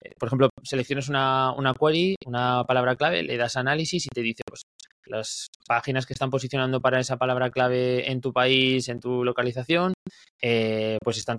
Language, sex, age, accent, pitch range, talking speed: English, male, 20-39, Spanish, 115-140 Hz, 180 wpm